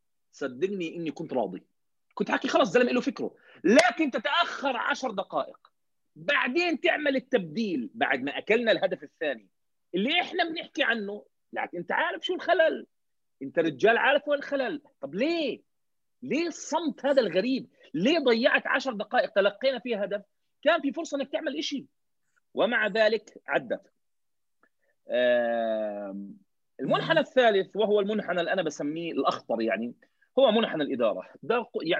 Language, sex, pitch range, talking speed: Arabic, male, 185-300 Hz, 135 wpm